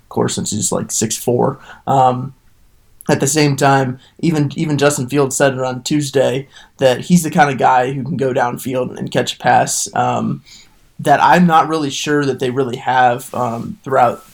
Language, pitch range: English, 125-140 Hz